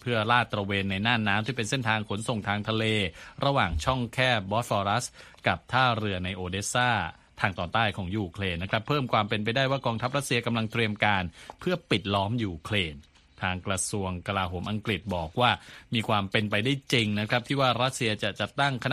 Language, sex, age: Thai, male, 20-39